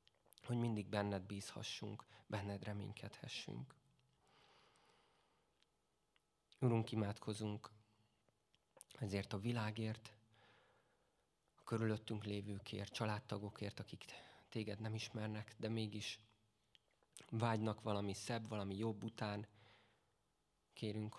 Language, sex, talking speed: Hungarian, male, 80 wpm